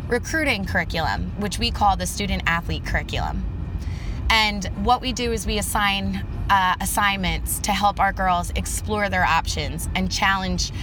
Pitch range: 160-205 Hz